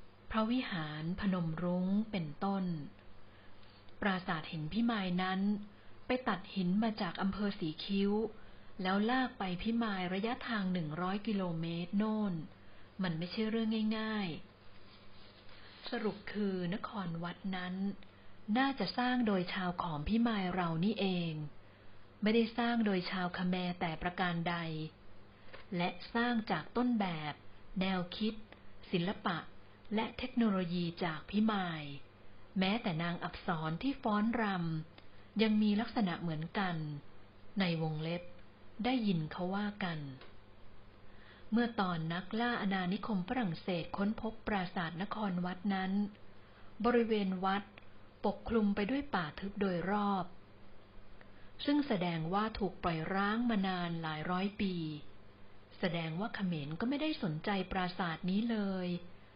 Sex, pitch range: female, 155-210 Hz